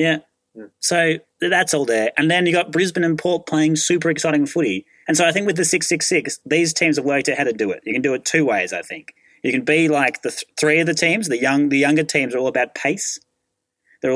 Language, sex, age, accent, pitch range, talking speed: English, male, 30-49, Australian, 120-155 Hz, 255 wpm